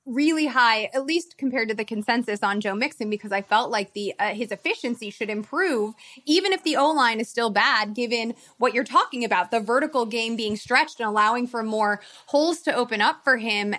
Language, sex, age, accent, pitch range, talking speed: English, female, 20-39, American, 225-280 Hz, 210 wpm